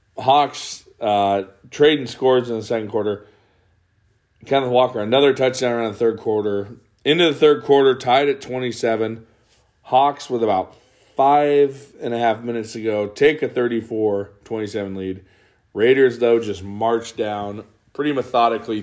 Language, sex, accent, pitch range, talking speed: English, male, American, 95-115 Hz, 140 wpm